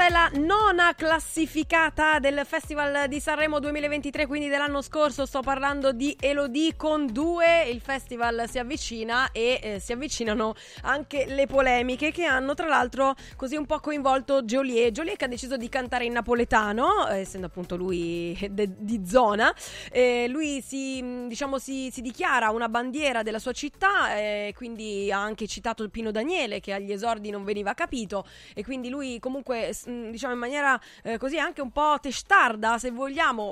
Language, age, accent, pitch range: Italian, 20-39, native, 225-290 Hz